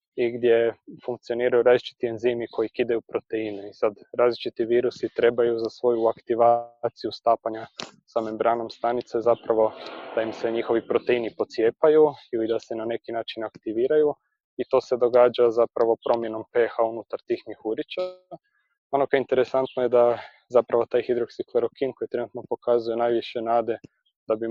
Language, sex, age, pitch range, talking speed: Croatian, male, 20-39, 115-130 Hz, 145 wpm